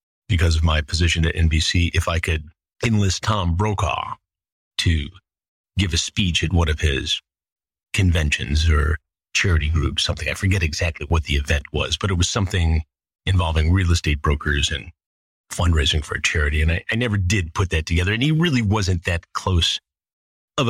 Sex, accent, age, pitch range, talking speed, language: male, American, 30-49, 80-105 Hz, 175 wpm, English